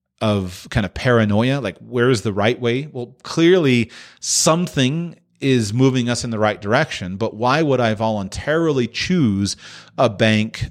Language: English